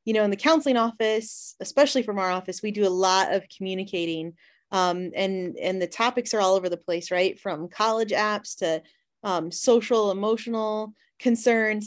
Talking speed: 175 wpm